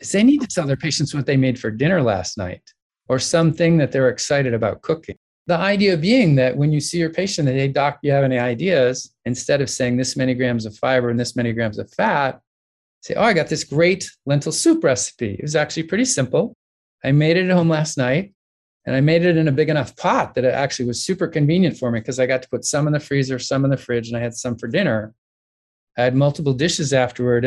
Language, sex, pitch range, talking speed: English, male, 125-160 Hz, 245 wpm